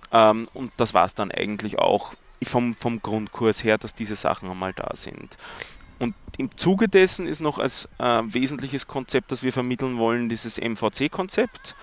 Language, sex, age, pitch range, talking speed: German, male, 30-49, 110-130 Hz, 170 wpm